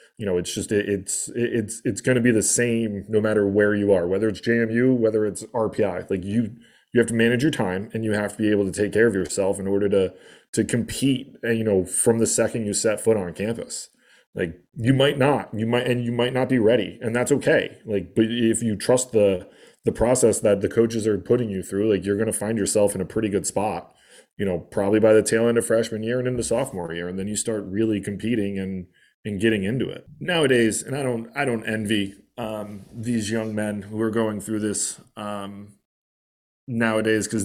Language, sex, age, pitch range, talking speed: English, male, 20-39, 100-115 Hz, 230 wpm